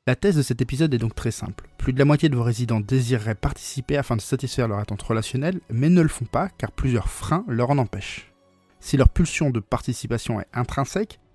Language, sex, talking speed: French, male, 220 wpm